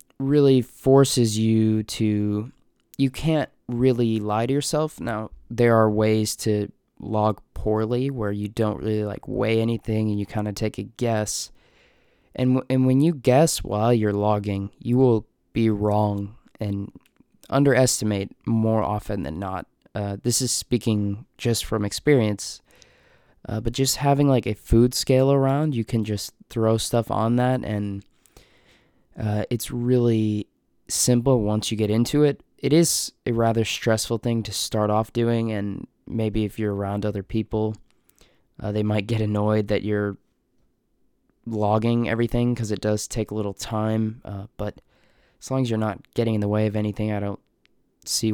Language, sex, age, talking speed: English, male, 20-39, 165 wpm